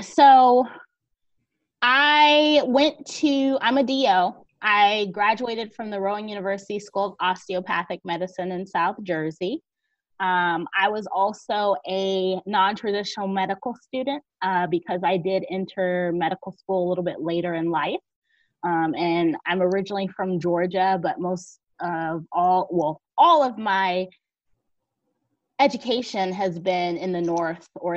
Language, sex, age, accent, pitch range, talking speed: English, female, 20-39, American, 175-210 Hz, 135 wpm